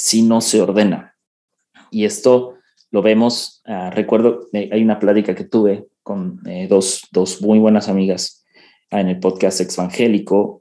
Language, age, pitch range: Spanish, 30-49, 100-130 Hz